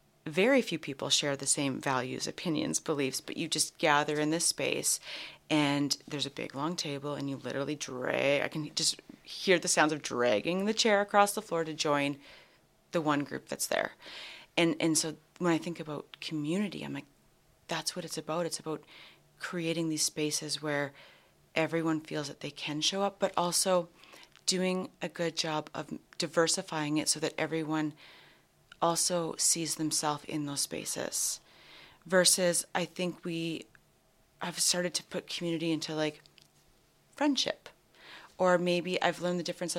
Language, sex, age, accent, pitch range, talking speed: English, female, 30-49, American, 150-175 Hz, 165 wpm